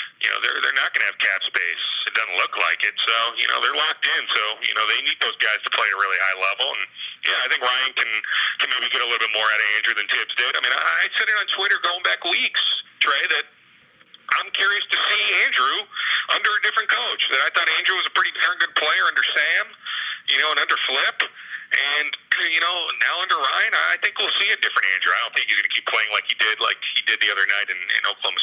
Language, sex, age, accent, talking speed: English, male, 40-59, American, 265 wpm